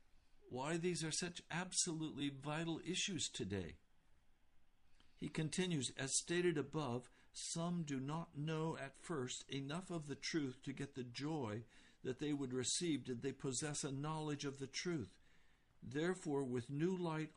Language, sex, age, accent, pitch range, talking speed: English, male, 60-79, American, 115-155 Hz, 150 wpm